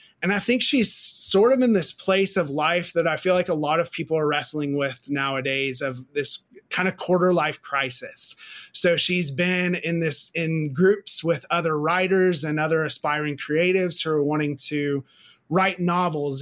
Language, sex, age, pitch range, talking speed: English, male, 30-49, 150-180 Hz, 185 wpm